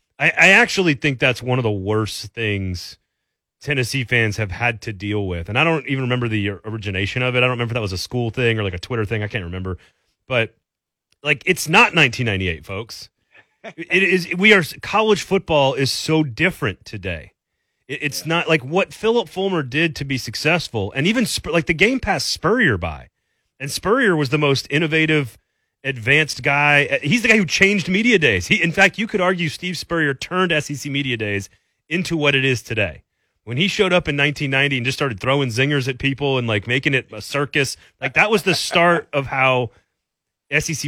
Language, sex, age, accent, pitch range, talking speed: English, male, 30-49, American, 120-175 Hz, 200 wpm